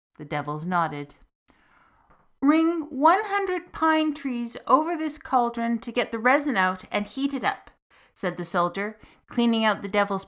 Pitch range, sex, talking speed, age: 175-245 Hz, female, 160 wpm, 50-69